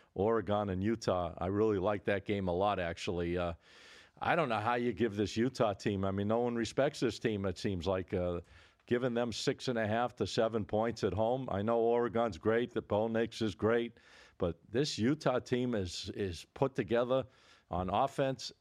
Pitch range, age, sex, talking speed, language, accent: 100-125 Hz, 50-69, male, 195 wpm, English, American